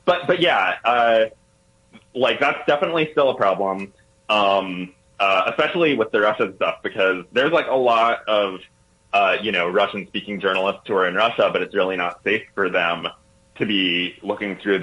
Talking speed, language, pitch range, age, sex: 180 wpm, English, 95-110 Hz, 20-39, male